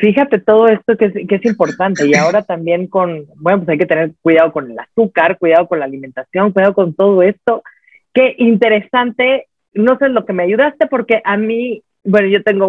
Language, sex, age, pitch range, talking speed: Spanish, female, 40-59, 185-230 Hz, 205 wpm